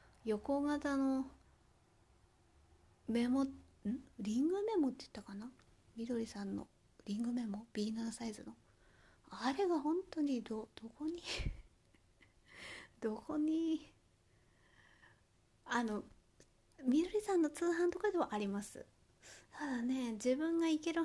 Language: Japanese